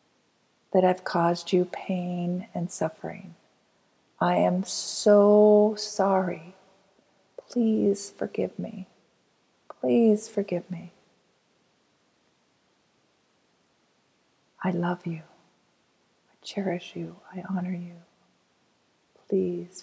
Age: 40-59